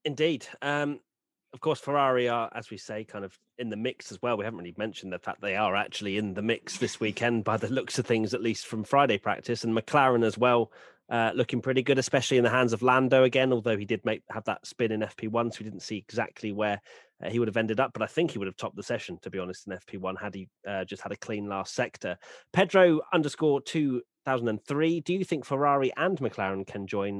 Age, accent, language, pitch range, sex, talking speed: 30-49, British, English, 110-140 Hz, male, 245 wpm